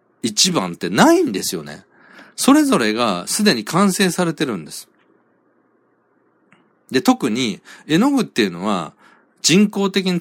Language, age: Japanese, 40-59